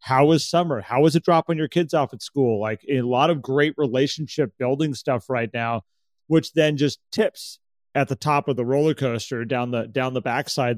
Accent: American